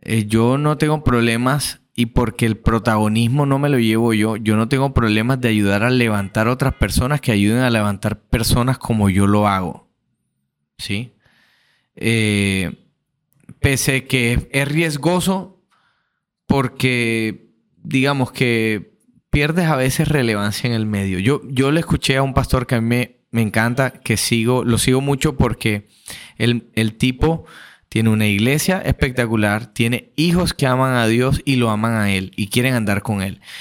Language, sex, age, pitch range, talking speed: Spanish, male, 30-49, 110-135 Hz, 160 wpm